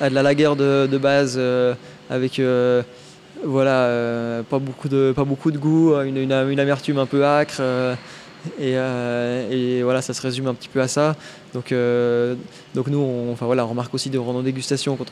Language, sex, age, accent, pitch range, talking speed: French, male, 20-39, French, 125-140 Hz, 210 wpm